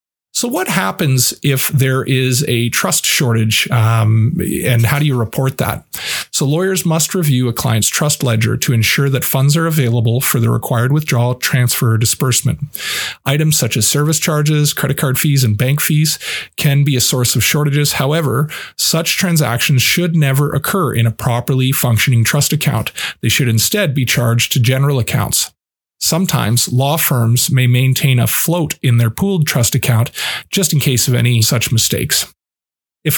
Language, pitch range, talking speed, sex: English, 120-150 Hz, 170 wpm, male